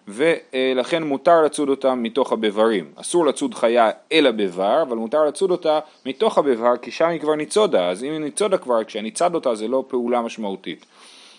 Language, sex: Hebrew, male